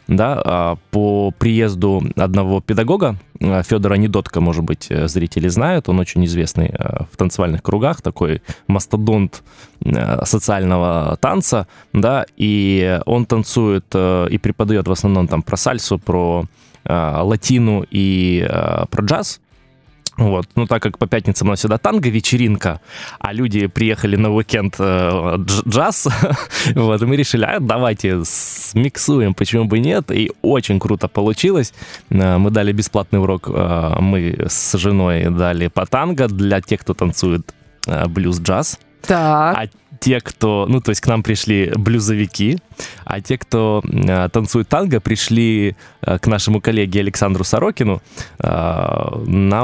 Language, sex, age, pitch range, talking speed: Russian, male, 20-39, 95-115 Hz, 125 wpm